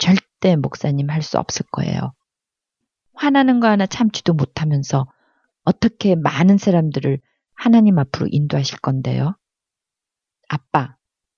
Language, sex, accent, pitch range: Korean, female, native, 135-175 Hz